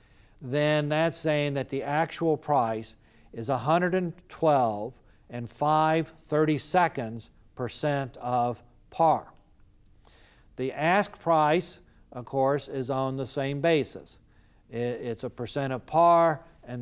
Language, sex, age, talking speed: English, male, 50-69, 110 wpm